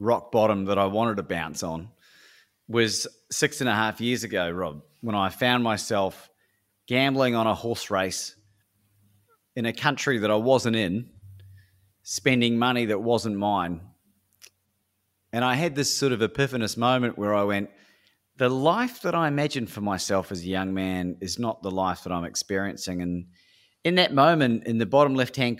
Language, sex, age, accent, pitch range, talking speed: English, male, 30-49, Australian, 100-125 Hz, 175 wpm